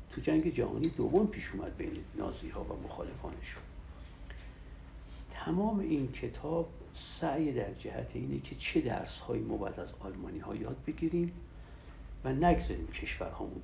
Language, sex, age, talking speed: Persian, male, 60-79, 145 wpm